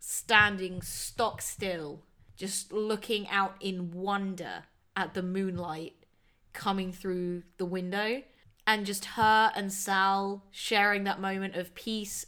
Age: 20-39